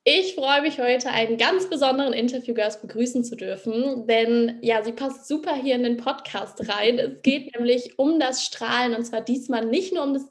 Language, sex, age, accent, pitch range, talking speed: German, female, 10-29, German, 220-275 Hz, 200 wpm